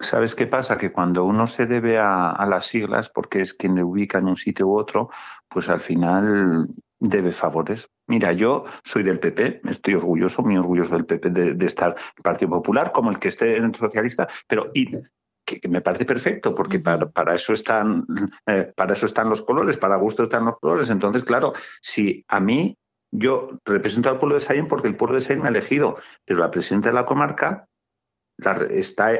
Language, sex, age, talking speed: Spanish, male, 50-69, 205 wpm